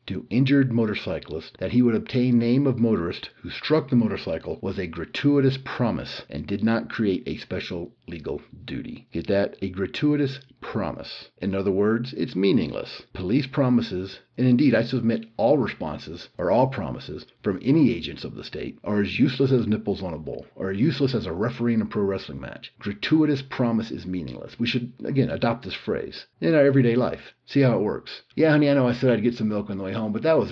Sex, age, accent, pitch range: male, 50-69, American, 100-130 Hz